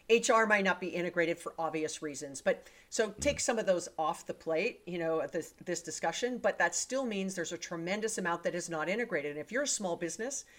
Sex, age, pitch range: female, 40-59, 165-215 Hz